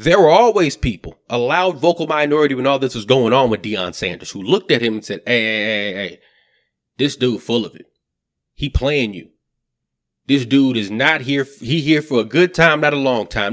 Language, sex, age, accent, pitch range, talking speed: English, male, 30-49, American, 120-155 Hz, 220 wpm